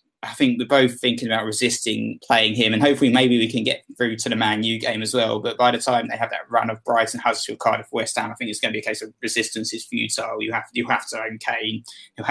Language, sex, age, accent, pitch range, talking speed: English, male, 20-39, British, 110-125 Hz, 280 wpm